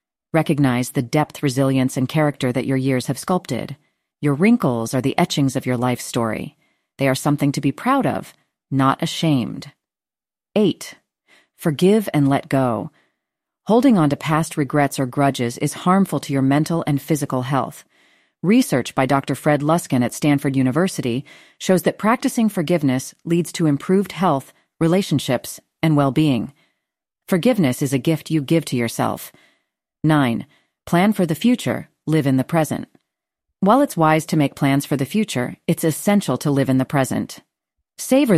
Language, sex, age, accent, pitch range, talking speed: English, female, 40-59, American, 135-175 Hz, 160 wpm